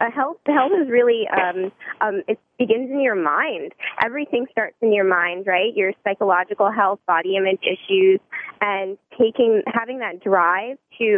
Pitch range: 195-240 Hz